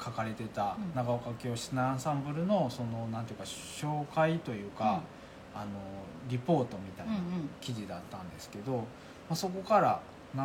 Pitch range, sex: 110-155 Hz, male